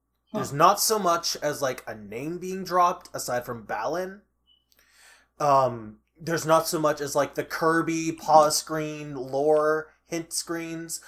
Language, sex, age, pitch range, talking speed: English, male, 20-39, 155-235 Hz, 145 wpm